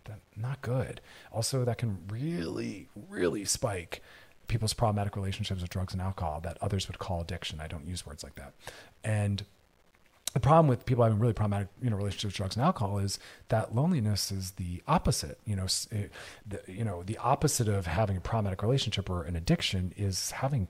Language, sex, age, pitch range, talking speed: English, male, 40-59, 95-120 Hz, 190 wpm